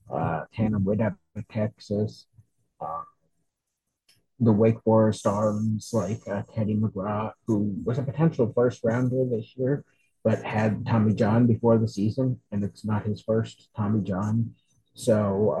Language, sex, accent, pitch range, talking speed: English, male, American, 105-115 Hz, 135 wpm